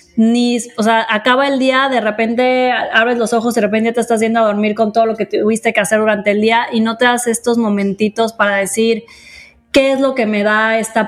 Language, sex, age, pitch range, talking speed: Spanish, female, 20-39, 215-250 Hz, 235 wpm